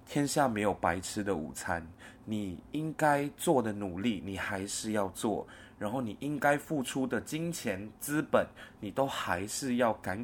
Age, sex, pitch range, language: 20-39, male, 100-135 Hz, Chinese